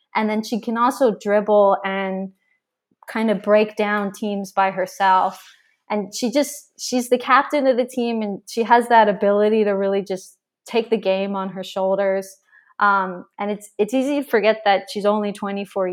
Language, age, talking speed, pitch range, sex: English, 20-39, 185 wpm, 195-235 Hz, female